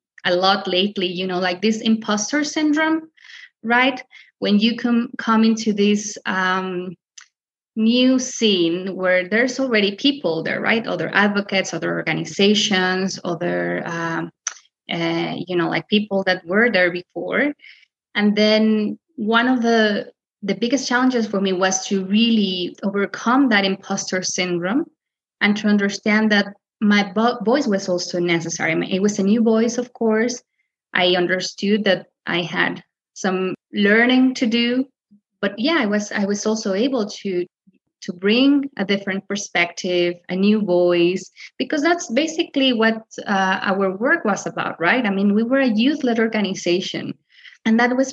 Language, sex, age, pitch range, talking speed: English, female, 20-39, 190-245 Hz, 150 wpm